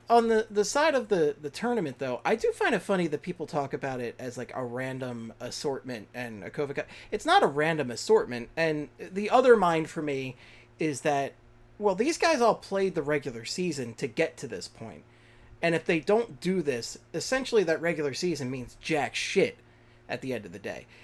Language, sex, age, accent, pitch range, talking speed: English, male, 30-49, American, 120-180 Hz, 210 wpm